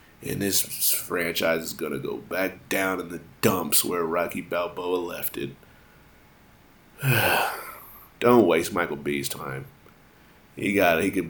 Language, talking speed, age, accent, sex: English, 140 wpm, 30-49, American, male